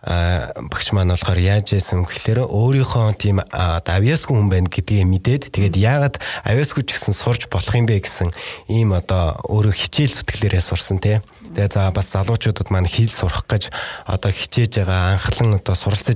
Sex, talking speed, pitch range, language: male, 125 wpm, 95-115 Hz, Russian